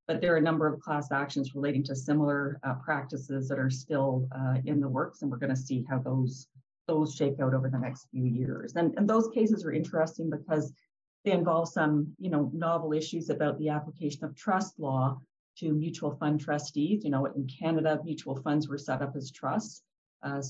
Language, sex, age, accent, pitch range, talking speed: English, female, 50-69, American, 135-155 Hz, 210 wpm